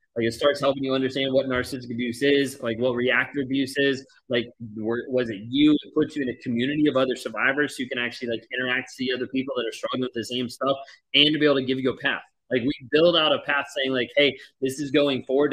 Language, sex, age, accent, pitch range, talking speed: English, male, 20-39, American, 125-150 Hz, 260 wpm